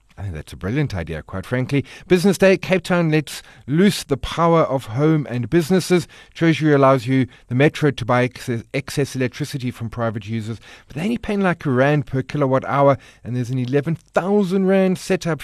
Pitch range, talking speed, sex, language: 125-165 Hz, 185 wpm, male, English